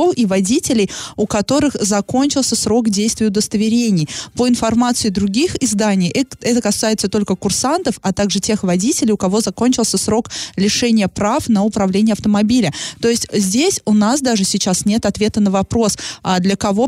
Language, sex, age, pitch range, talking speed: Russian, female, 20-39, 190-225 Hz, 150 wpm